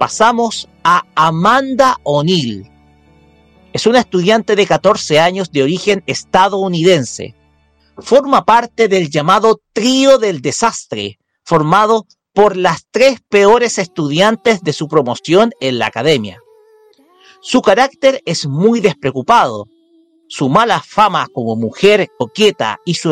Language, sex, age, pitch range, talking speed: Spanish, male, 50-69, 165-260 Hz, 115 wpm